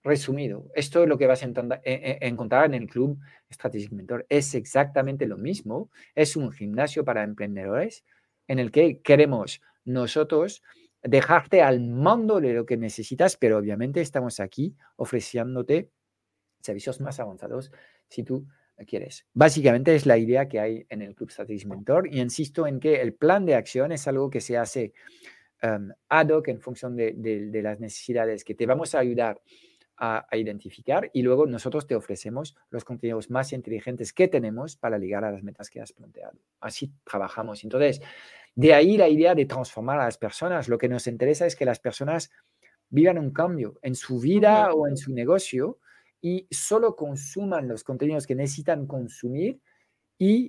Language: Spanish